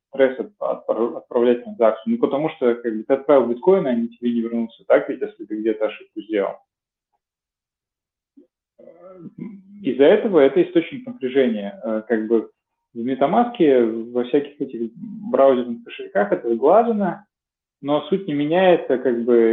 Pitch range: 115-145 Hz